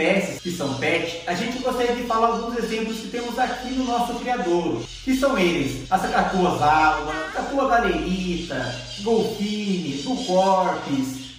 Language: Portuguese